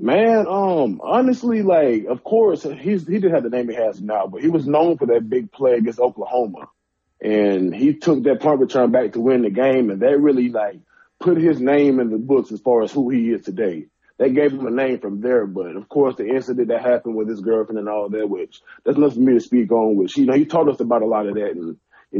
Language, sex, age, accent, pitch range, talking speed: English, male, 20-39, American, 115-150 Hz, 255 wpm